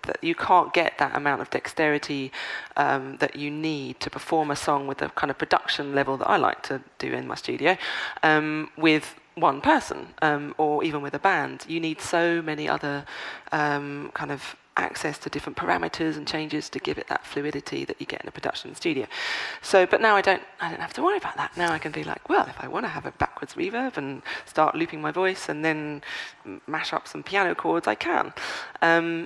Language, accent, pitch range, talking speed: English, British, 140-165 Hz, 220 wpm